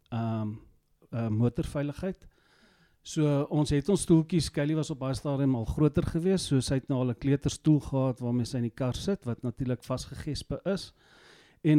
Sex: male